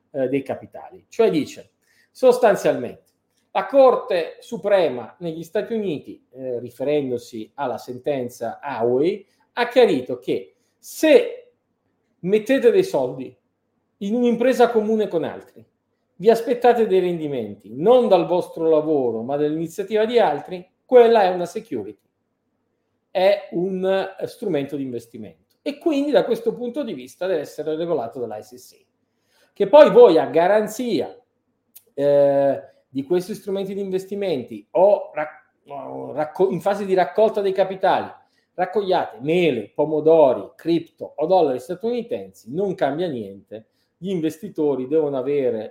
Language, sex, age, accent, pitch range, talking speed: Italian, male, 40-59, native, 140-230 Hz, 120 wpm